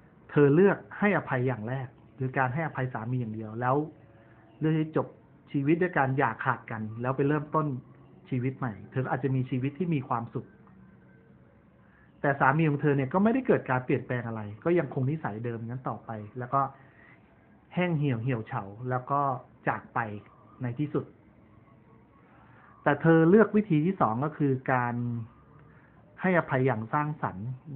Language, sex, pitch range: Thai, male, 115-145 Hz